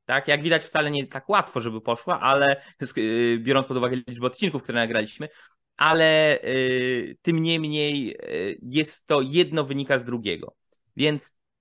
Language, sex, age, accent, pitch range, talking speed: Polish, male, 20-39, native, 125-165 Hz, 140 wpm